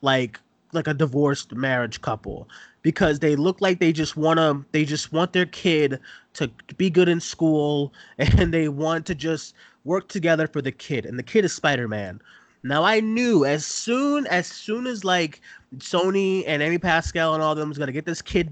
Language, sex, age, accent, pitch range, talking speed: English, male, 20-39, American, 140-175 Hz, 200 wpm